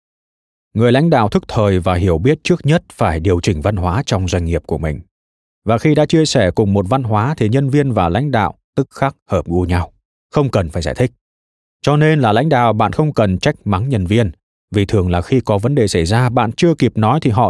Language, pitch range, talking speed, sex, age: Vietnamese, 90-130 Hz, 245 wpm, male, 20-39